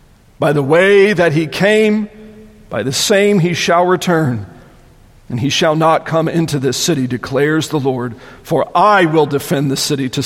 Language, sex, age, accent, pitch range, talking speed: English, male, 40-59, American, 155-215 Hz, 175 wpm